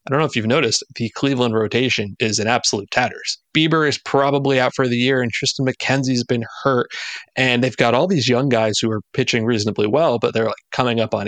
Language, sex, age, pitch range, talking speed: English, male, 30-49, 115-145 Hz, 225 wpm